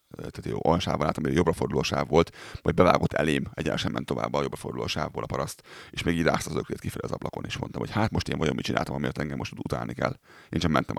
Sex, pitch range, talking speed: male, 80-110 Hz, 255 wpm